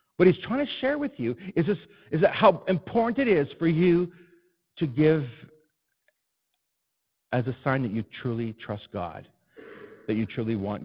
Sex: male